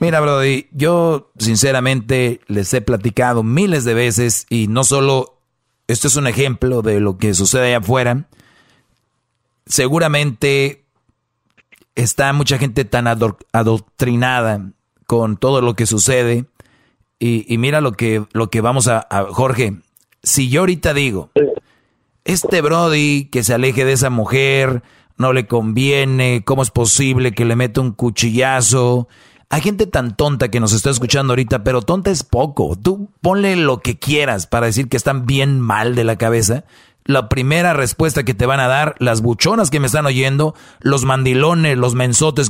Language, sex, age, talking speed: Spanish, male, 40-59, 160 wpm